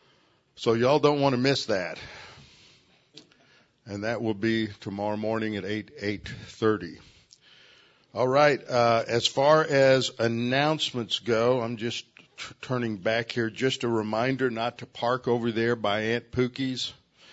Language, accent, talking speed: English, American, 140 wpm